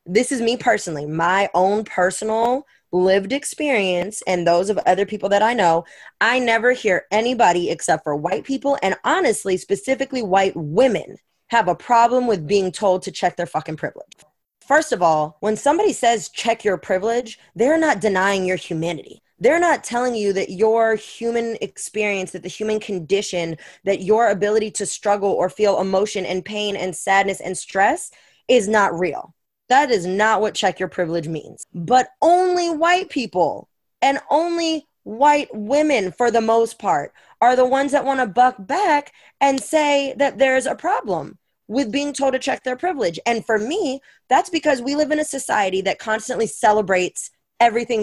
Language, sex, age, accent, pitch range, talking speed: English, female, 20-39, American, 190-255 Hz, 175 wpm